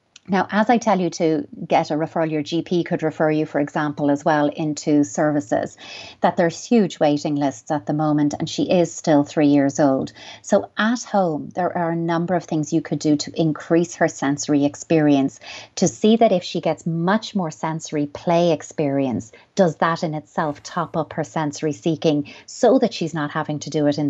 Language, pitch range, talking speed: English, 155-185 Hz, 200 wpm